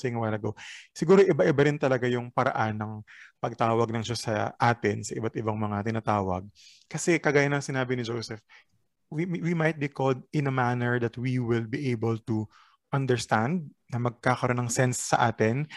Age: 20-39